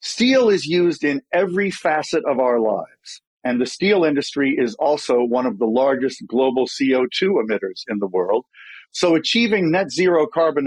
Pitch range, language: 130-195 Hz, English